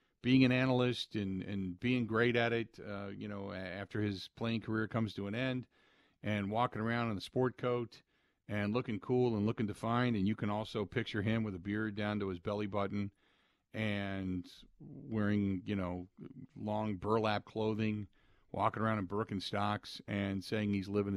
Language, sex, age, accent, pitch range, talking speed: English, male, 50-69, American, 95-120 Hz, 175 wpm